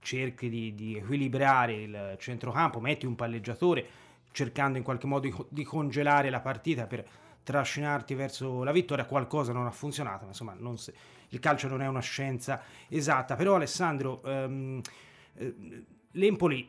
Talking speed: 145 wpm